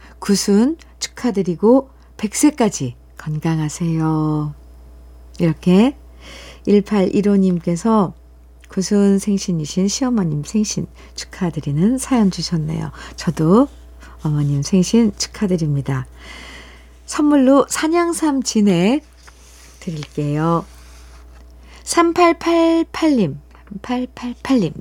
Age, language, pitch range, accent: 50-69, Korean, 160-245 Hz, native